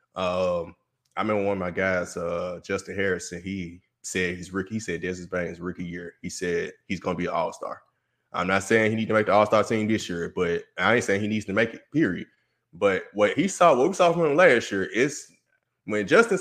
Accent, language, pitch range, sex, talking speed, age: American, English, 90-120 Hz, male, 240 wpm, 20-39